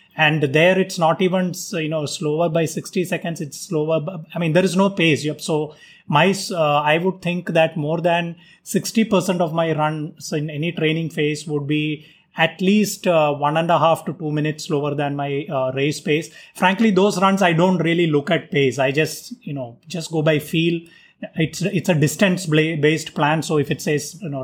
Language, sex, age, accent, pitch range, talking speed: English, male, 20-39, Indian, 150-175 Hz, 205 wpm